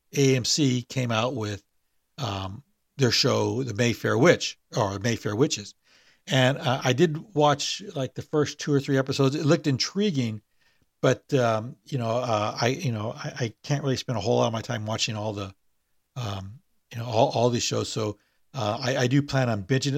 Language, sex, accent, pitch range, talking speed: English, male, American, 105-145 Hz, 195 wpm